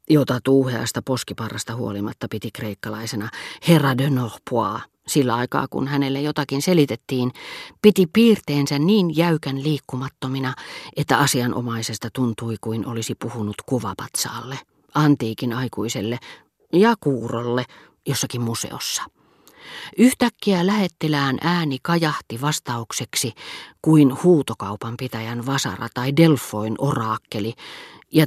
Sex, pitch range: female, 120-150 Hz